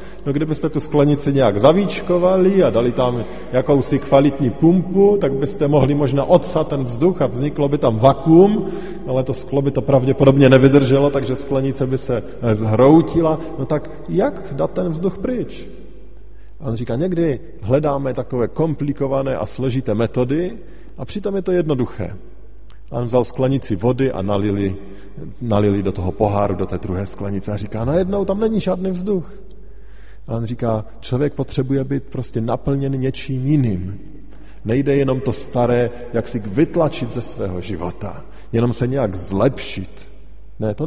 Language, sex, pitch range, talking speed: Slovak, male, 100-140 Hz, 155 wpm